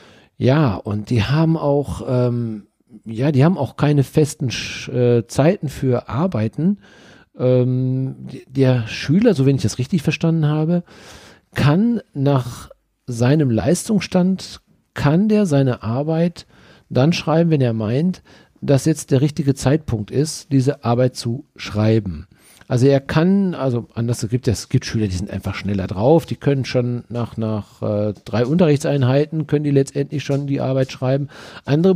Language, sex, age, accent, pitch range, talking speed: German, male, 50-69, German, 120-160 Hz, 150 wpm